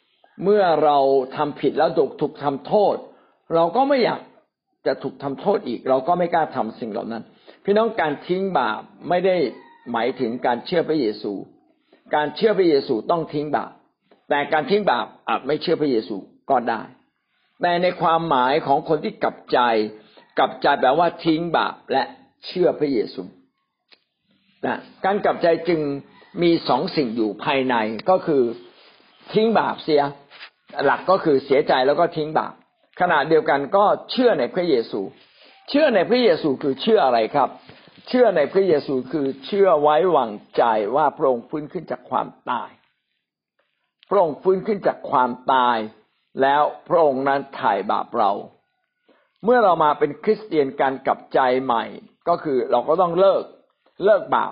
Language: Thai